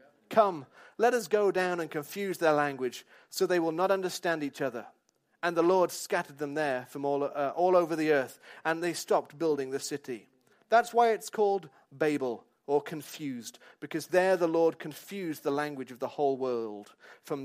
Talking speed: 185 wpm